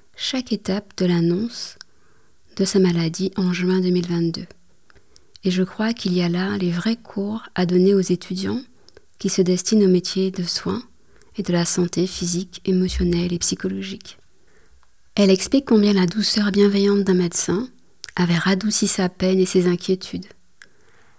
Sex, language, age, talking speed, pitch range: female, French, 20-39, 155 wpm, 175-200 Hz